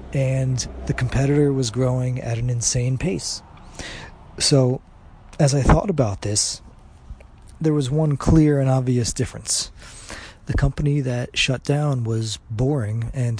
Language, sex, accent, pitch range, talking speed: English, male, American, 110-135 Hz, 135 wpm